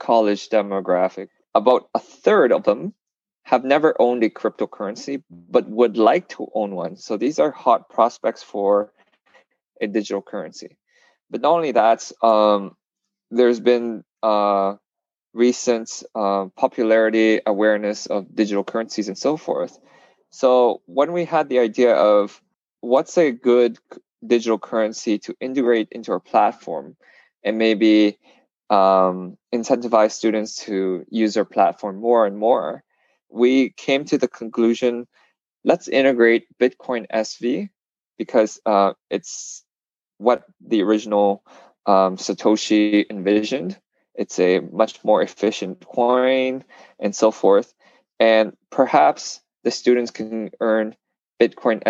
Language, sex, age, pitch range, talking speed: English, male, 20-39, 100-120 Hz, 125 wpm